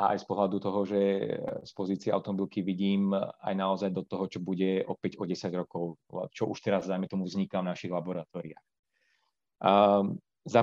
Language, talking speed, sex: Slovak, 165 wpm, male